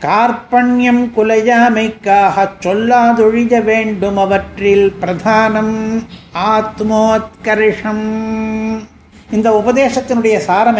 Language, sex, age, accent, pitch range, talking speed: Tamil, male, 50-69, native, 210-245 Hz, 55 wpm